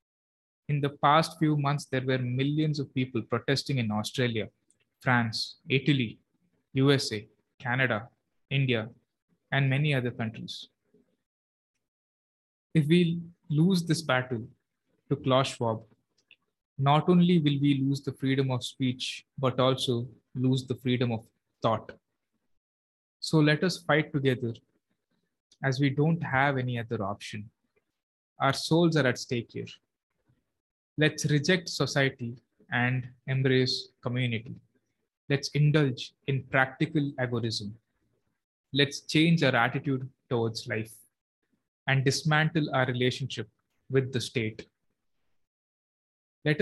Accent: Indian